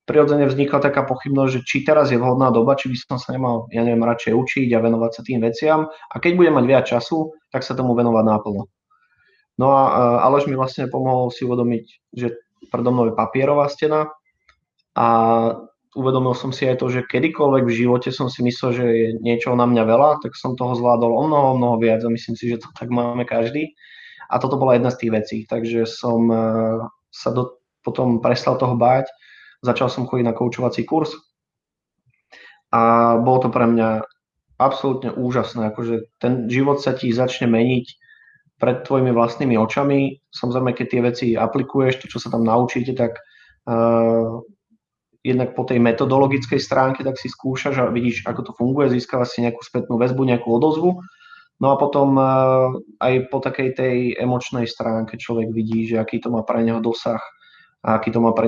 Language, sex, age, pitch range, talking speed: Slovak, male, 20-39, 115-135 Hz, 185 wpm